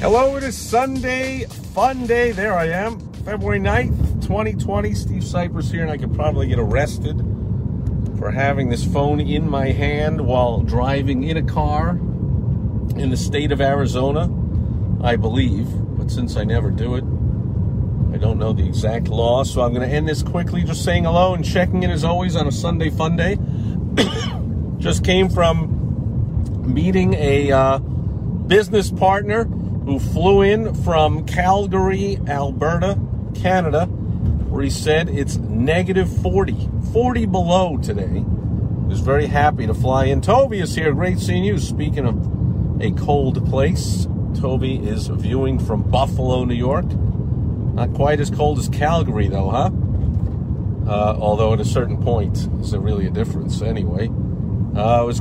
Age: 50-69